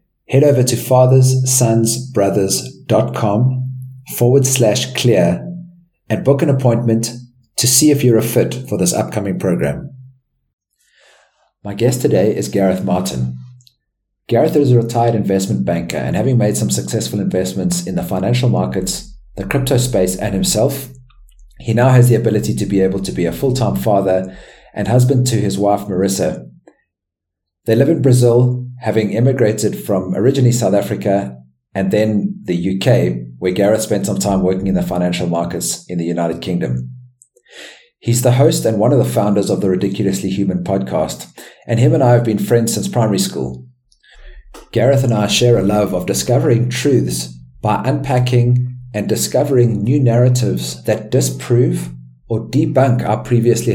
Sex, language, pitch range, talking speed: male, English, 95-125 Hz, 155 wpm